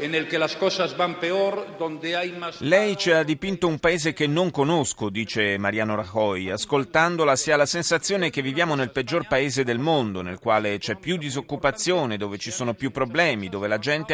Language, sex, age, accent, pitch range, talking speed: Italian, male, 30-49, native, 105-155 Hz, 160 wpm